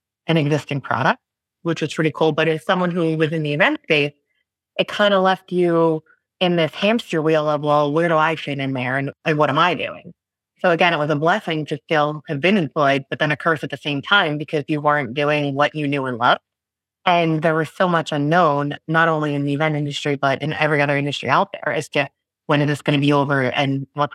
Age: 30-49